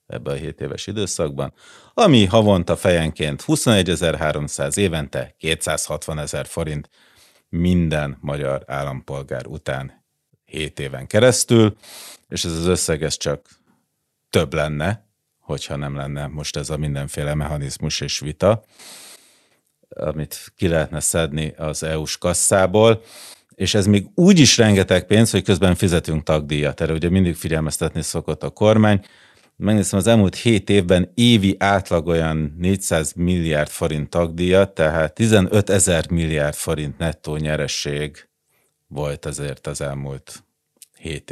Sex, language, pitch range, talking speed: male, Hungarian, 75-100 Hz, 125 wpm